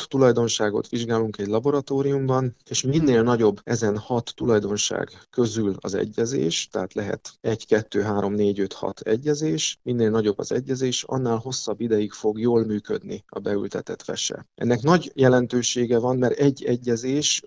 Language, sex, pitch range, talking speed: Hungarian, male, 110-130 Hz, 145 wpm